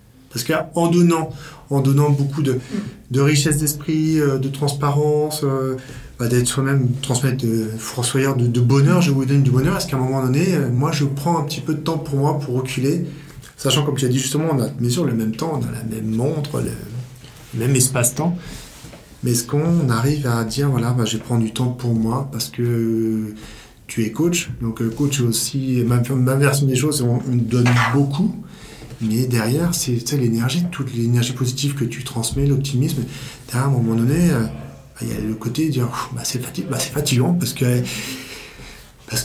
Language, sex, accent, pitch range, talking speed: French, male, French, 120-145 Hz, 200 wpm